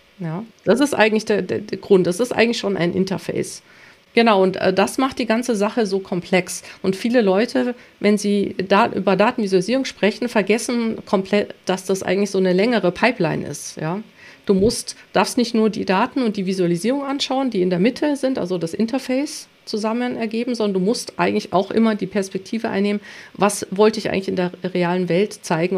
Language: German